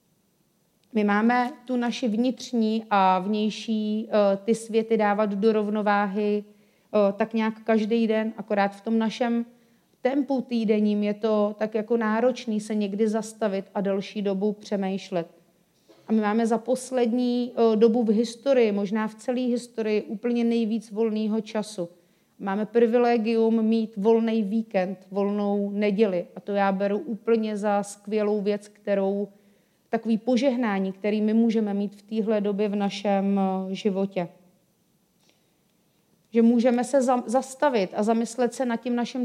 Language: Czech